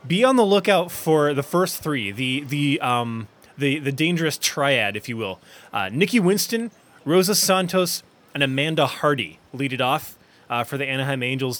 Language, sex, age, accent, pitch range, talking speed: English, male, 20-39, American, 120-160 Hz, 175 wpm